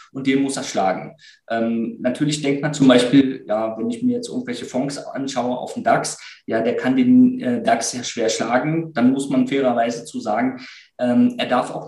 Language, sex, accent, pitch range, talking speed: German, male, German, 130-170 Hz, 205 wpm